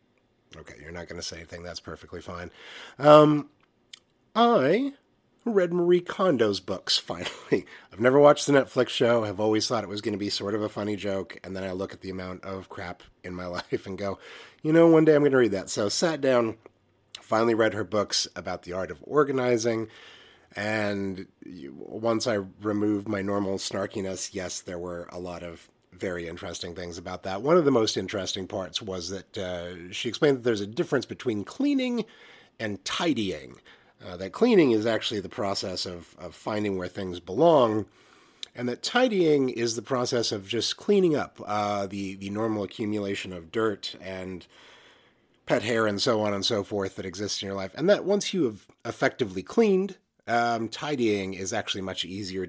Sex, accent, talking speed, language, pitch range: male, American, 190 wpm, English, 95-120 Hz